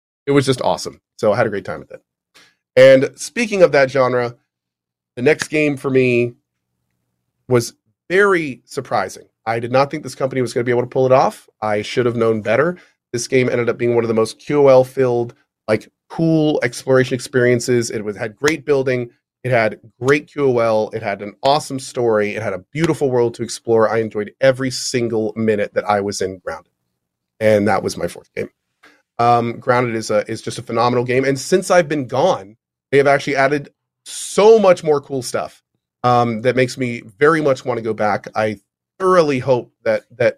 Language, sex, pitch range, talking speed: English, male, 110-135 Hz, 200 wpm